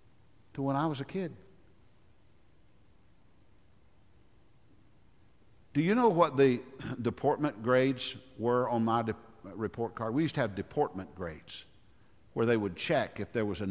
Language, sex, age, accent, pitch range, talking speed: English, male, 50-69, American, 100-155 Hz, 145 wpm